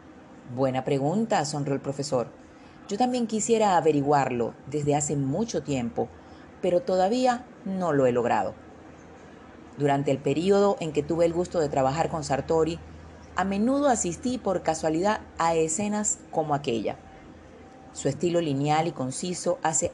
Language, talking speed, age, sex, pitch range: Spanish, 140 wpm, 40-59, female, 145-205 Hz